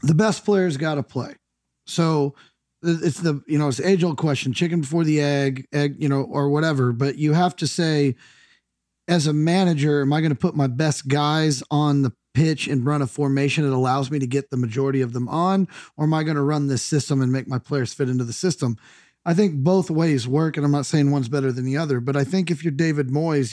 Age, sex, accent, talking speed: 40-59, male, American, 240 wpm